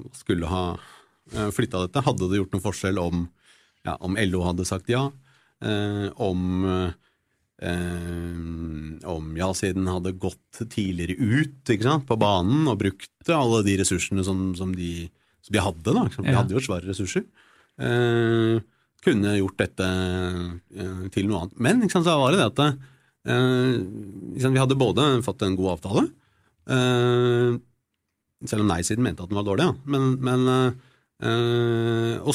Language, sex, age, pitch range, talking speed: English, male, 40-59, 95-130 Hz, 150 wpm